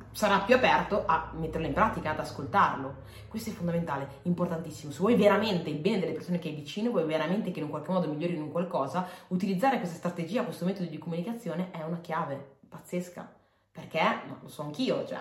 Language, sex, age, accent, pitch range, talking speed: Italian, female, 20-39, native, 155-180 Hz, 195 wpm